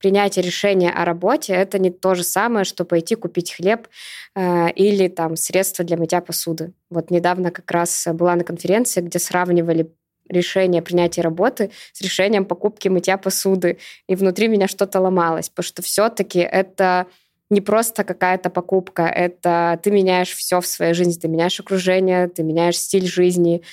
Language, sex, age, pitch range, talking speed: Russian, female, 20-39, 170-185 Hz, 160 wpm